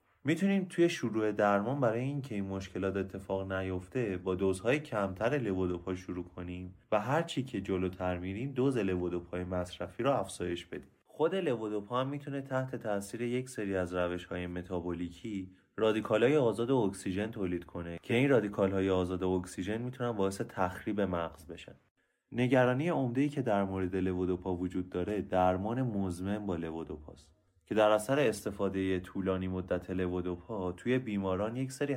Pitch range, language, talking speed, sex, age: 90-120 Hz, Persian, 140 wpm, male, 30-49